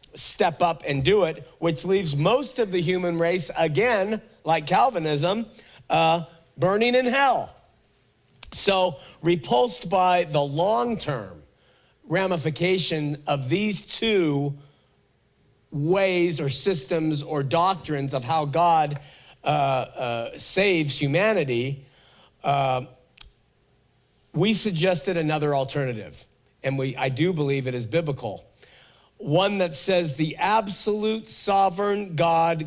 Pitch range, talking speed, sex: 145-185 Hz, 110 wpm, male